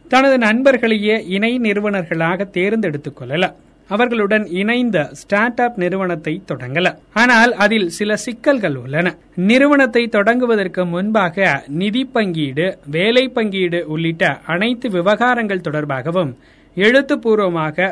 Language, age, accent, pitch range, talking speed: Tamil, 30-49, native, 175-230 Hz, 95 wpm